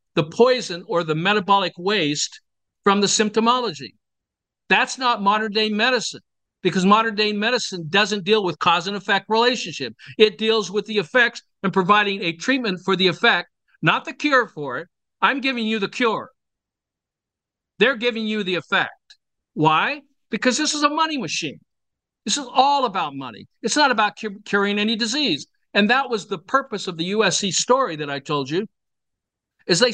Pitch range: 185-235 Hz